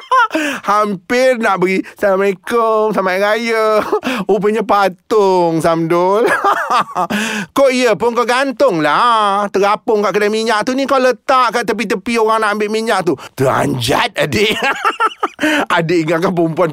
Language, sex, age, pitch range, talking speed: Malay, male, 30-49, 200-280 Hz, 125 wpm